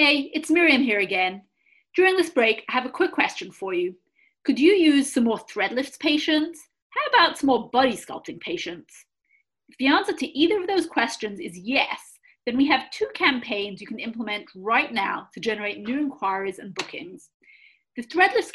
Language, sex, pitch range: English, female, 210-320 Hz